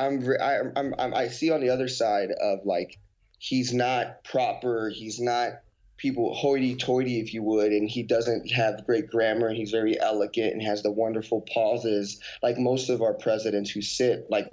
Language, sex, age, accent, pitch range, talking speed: English, male, 20-39, American, 95-120 Hz, 185 wpm